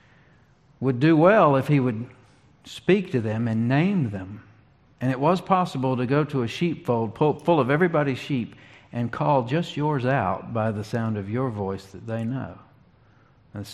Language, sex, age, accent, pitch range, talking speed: English, male, 50-69, American, 120-140 Hz, 175 wpm